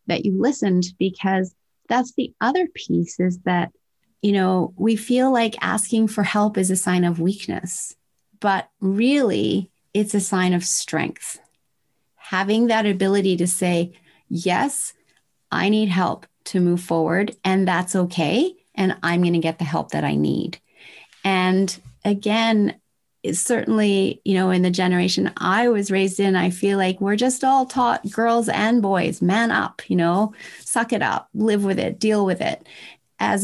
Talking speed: 165 wpm